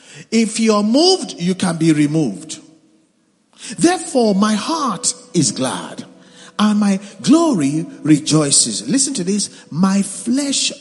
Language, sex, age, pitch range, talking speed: English, male, 50-69, 175-245 Hz, 120 wpm